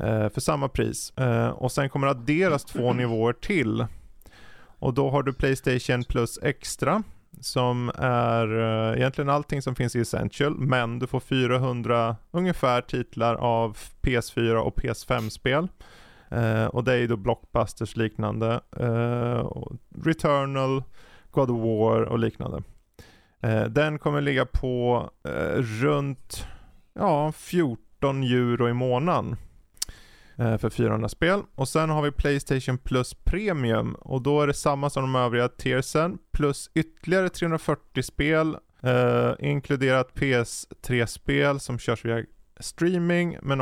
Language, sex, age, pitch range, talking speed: Swedish, male, 20-39, 115-140 Hz, 120 wpm